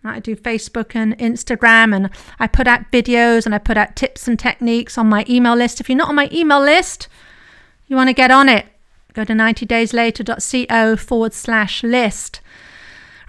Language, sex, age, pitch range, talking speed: English, female, 40-59, 215-260 Hz, 190 wpm